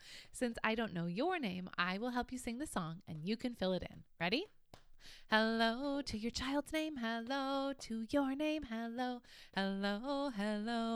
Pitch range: 210-275 Hz